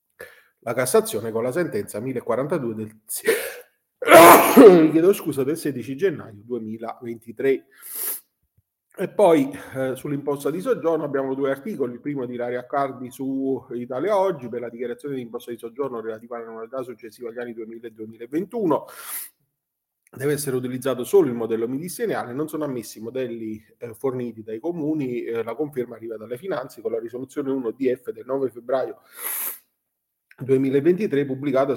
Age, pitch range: 30-49, 120-150 Hz